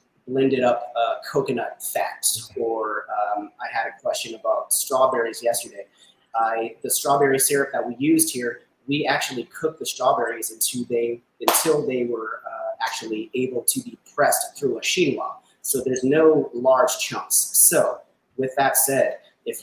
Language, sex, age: English, male, 30-49